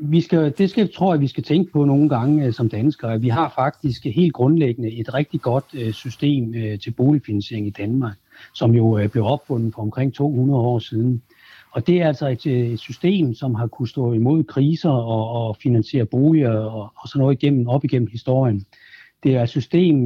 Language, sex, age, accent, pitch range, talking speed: Danish, male, 60-79, native, 115-145 Hz, 205 wpm